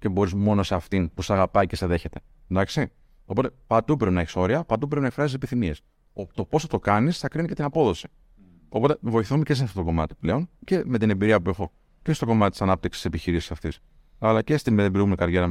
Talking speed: 230 wpm